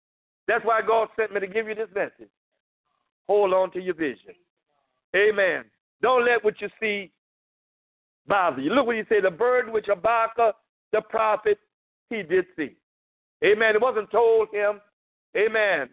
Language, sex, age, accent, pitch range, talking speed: English, male, 50-69, American, 200-240 Hz, 160 wpm